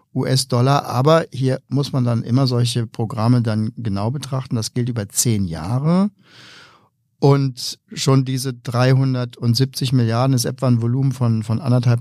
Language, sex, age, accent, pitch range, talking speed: German, male, 50-69, German, 120-135 Hz, 145 wpm